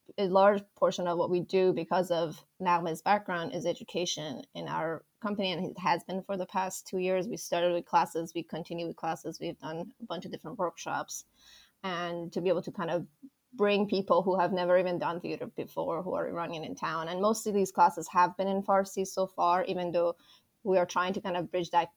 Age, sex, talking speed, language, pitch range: 20-39, female, 225 wpm, English, 170-190 Hz